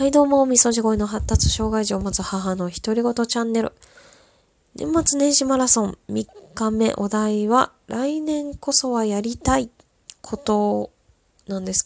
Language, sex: Japanese, female